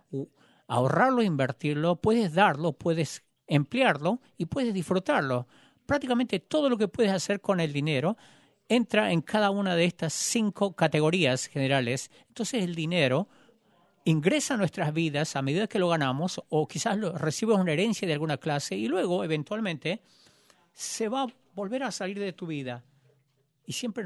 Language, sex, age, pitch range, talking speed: English, male, 50-69, 155-220 Hz, 155 wpm